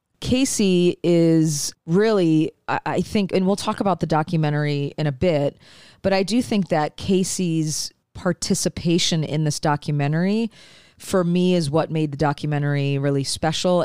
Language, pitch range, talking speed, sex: English, 145-175 Hz, 145 wpm, female